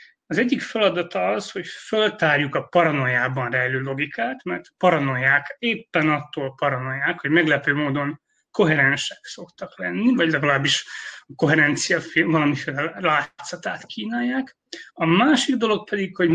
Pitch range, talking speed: 150-190 Hz, 120 wpm